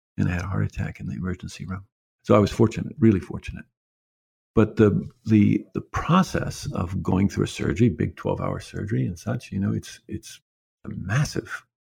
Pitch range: 90-110 Hz